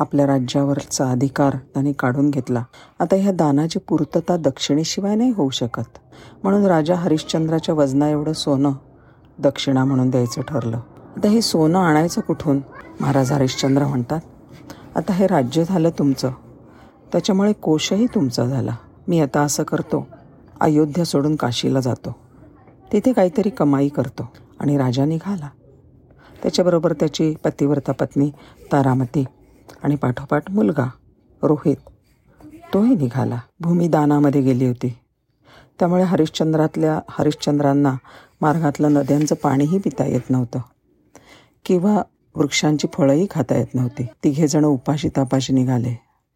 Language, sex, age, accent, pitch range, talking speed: Marathi, female, 40-59, native, 135-165 Hz, 115 wpm